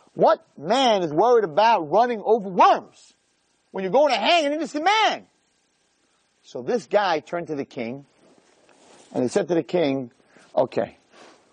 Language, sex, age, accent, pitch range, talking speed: English, male, 40-59, American, 125-175 Hz, 155 wpm